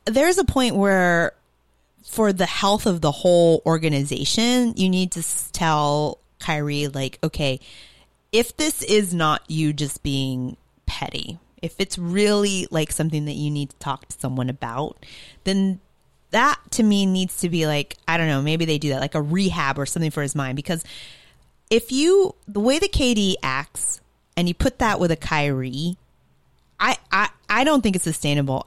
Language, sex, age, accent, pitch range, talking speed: English, female, 30-49, American, 150-225 Hz, 175 wpm